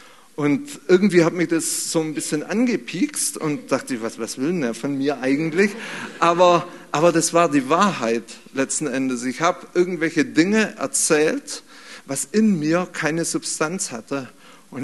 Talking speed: 155 wpm